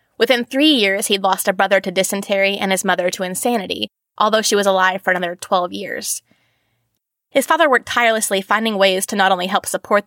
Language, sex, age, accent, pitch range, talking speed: English, female, 20-39, American, 185-225 Hz, 195 wpm